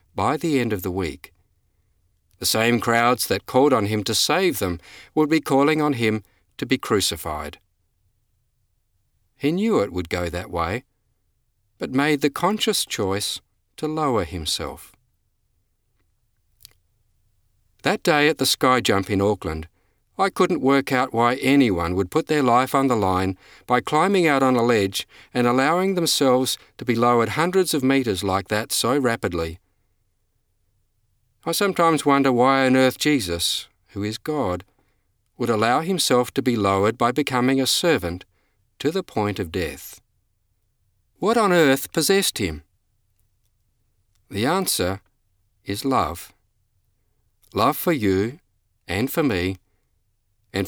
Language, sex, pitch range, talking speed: English, male, 95-135 Hz, 140 wpm